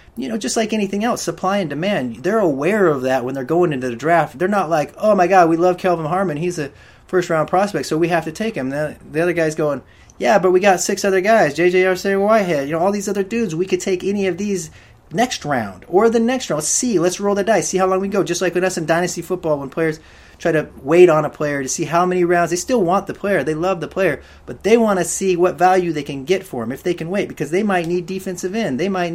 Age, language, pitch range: 30-49, English, 140-185 Hz